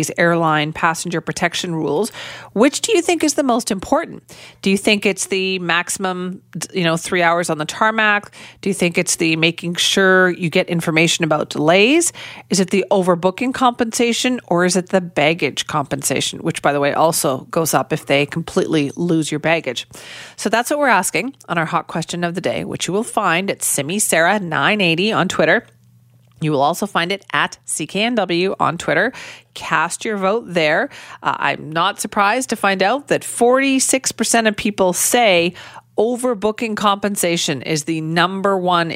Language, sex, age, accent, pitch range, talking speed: English, female, 40-59, American, 160-210 Hz, 175 wpm